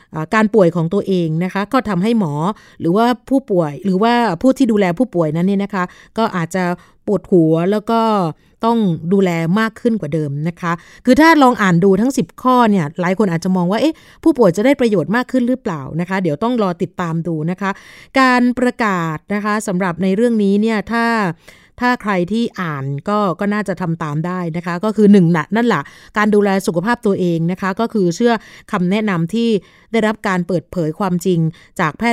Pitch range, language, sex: 175-220 Hz, Thai, female